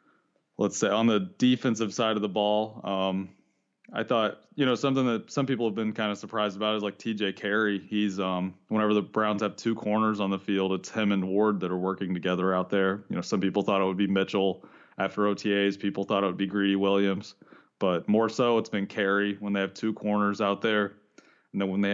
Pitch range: 95-110 Hz